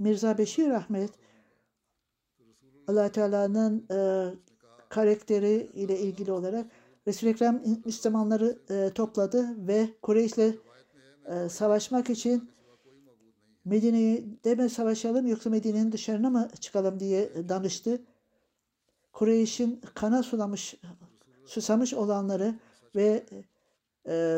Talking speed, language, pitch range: 90 wpm, Turkish, 180-225 Hz